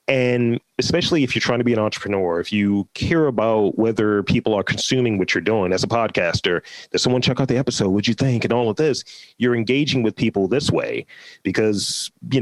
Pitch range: 110-140 Hz